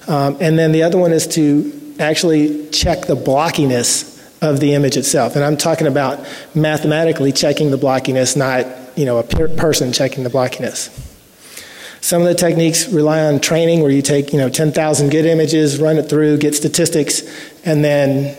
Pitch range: 140-160 Hz